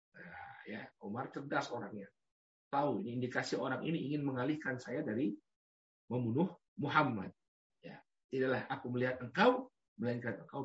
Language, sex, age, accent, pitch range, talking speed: Indonesian, male, 50-69, native, 105-150 Hz, 125 wpm